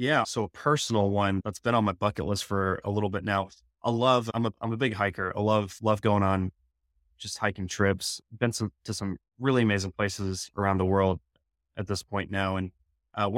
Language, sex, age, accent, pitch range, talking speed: English, male, 20-39, American, 95-115 Hz, 215 wpm